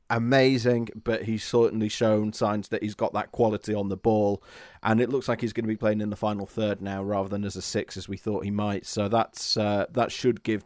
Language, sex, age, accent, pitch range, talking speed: English, male, 30-49, British, 100-115 Hz, 250 wpm